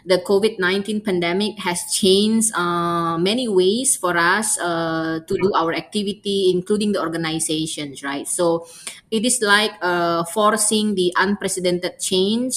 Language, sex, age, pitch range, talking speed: English, female, 20-39, 165-200 Hz, 140 wpm